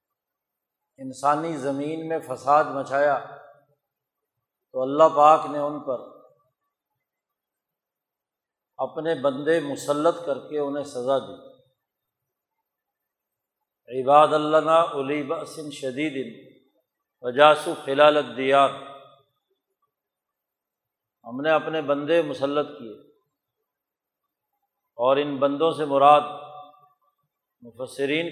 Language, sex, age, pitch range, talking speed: Urdu, male, 50-69, 140-160 Hz, 85 wpm